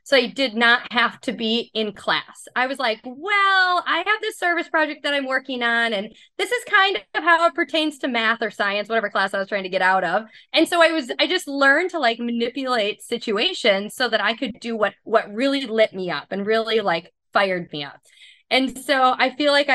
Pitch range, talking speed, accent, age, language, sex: 210-275 Hz, 230 wpm, American, 20-39, English, female